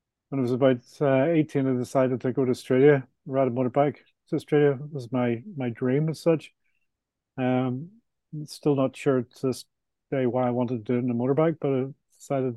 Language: English